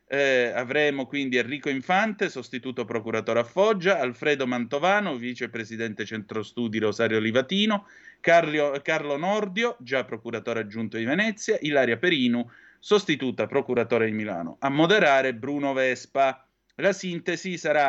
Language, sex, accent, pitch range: Italian, male, native, 120-165 Hz